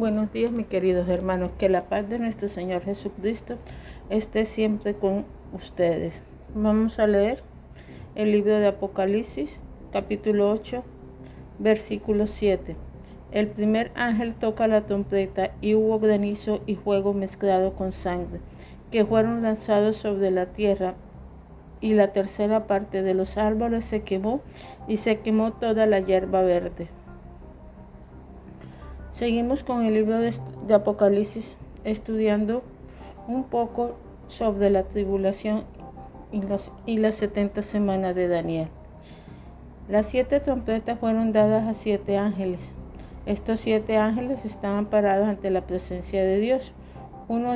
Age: 50-69